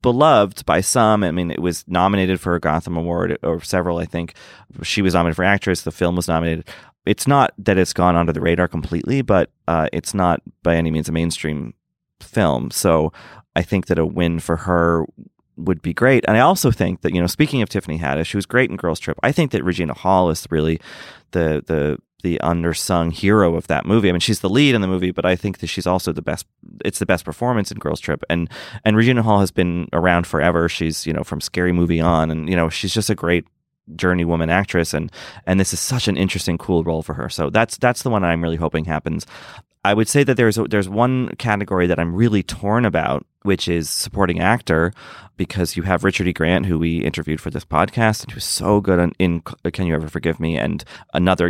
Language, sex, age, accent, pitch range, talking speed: English, male, 30-49, American, 85-105 Hz, 230 wpm